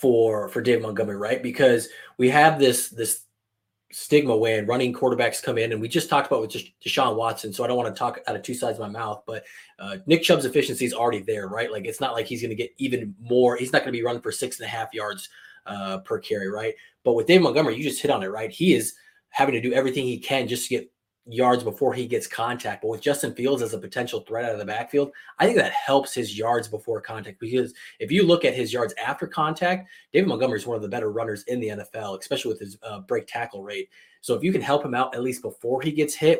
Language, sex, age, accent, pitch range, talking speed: English, male, 20-39, American, 115-145 Hz, 260 wpm